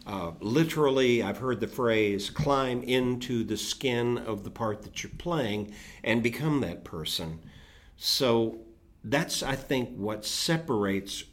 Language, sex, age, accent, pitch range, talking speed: English, male, 50-69, American, 95-120 Hz, 140 wpm